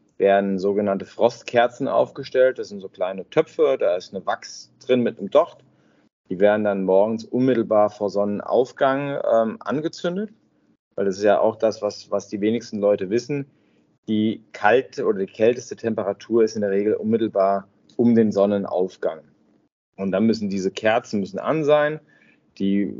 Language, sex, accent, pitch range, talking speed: German, male, German, 100-125 Hz, 160 wpm